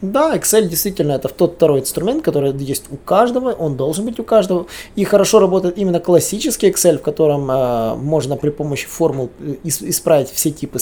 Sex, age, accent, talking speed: male, 20-39, native, 175 wpm